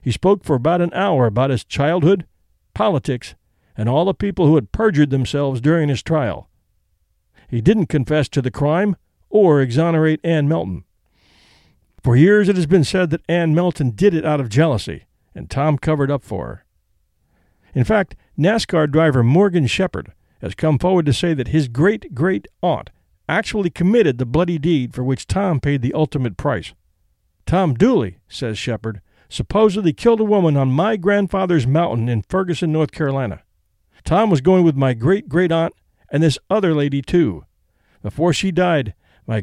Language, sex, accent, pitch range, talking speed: English, male, American, 110-175 Hz, 165 wpm